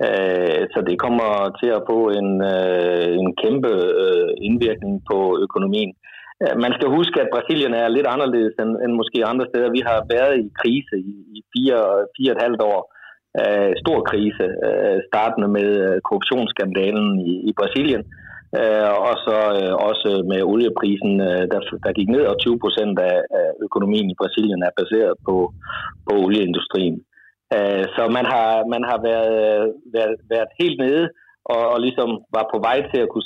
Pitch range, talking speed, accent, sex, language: 100-170 Hz, 145 wpm, native, male, Danish